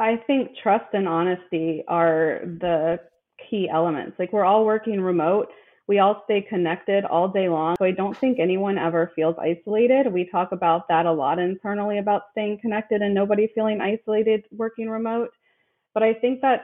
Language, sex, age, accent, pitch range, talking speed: English, female, 20-39, American, 175-215 Hz, 175 wpm